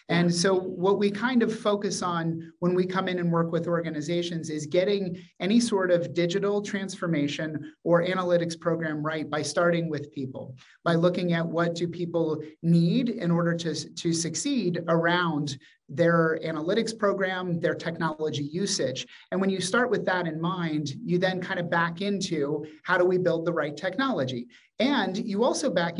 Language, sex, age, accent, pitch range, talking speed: English, male, 30-49, American, 160-190 Hz, 175 wpm